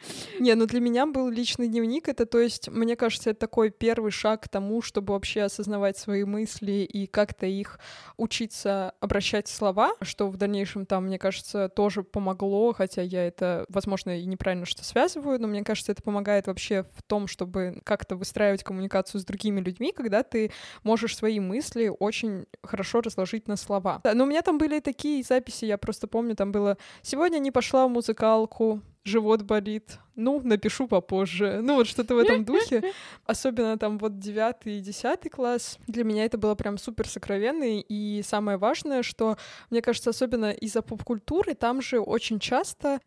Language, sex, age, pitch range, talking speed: Russian, female, 20-39, 200-235 Hz, 180 wpm